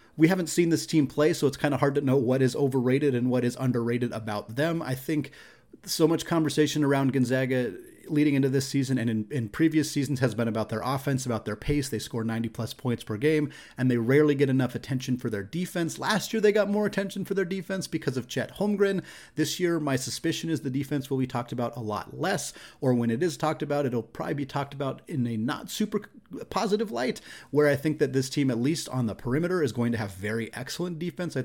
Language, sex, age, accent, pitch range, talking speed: English, male, 30-49, American, 120-155 Hz, 235 wpm